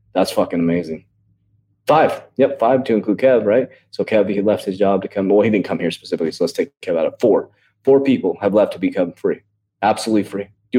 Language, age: English, 20-39